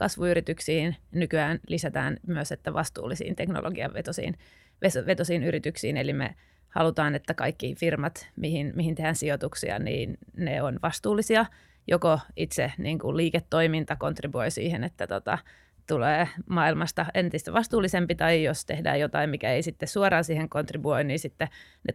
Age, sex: 30-49, female